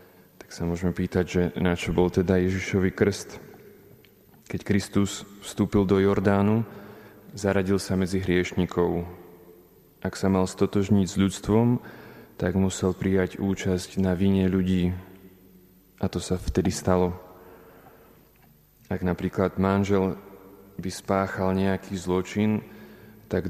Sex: male